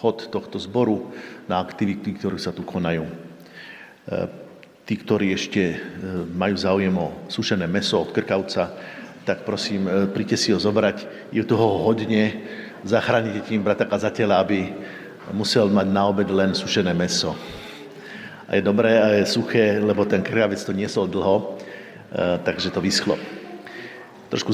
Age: 50-69